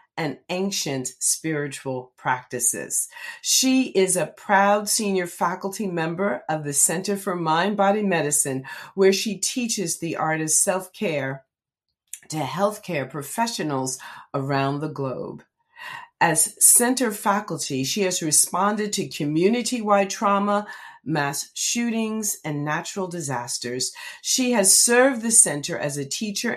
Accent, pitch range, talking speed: American, 145-210 Hz, 120 wpm